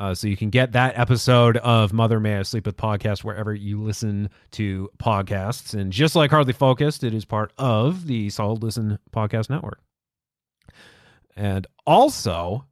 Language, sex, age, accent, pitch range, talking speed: English, male, 30-49, American, 105-130 Hz, 165 wpm